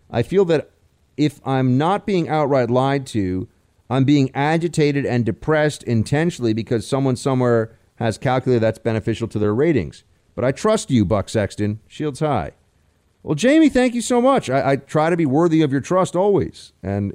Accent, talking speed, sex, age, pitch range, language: American, 180 wpm, male, 40-59, 105-135 Hz, English